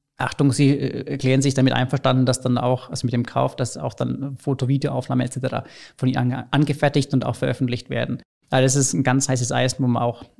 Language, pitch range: German, 130-145 Hz